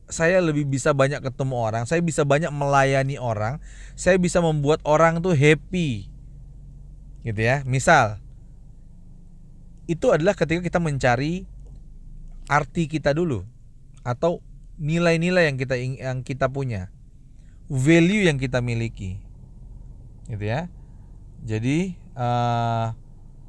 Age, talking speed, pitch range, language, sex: 30-49, 110 wpm, 130-165 Hz, Indonesian, male